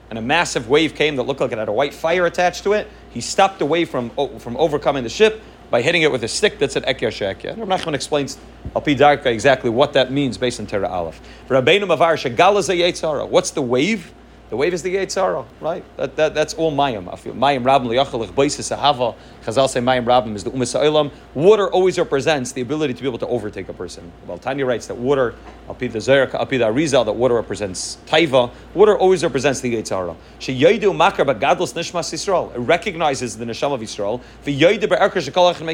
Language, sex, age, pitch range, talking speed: English, male, 30-49, 125-170 Hz, 210 wpm